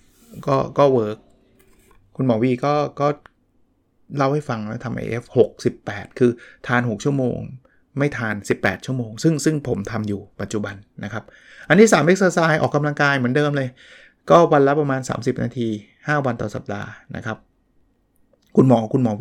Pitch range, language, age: 115-150 Hz, Thai, 20-39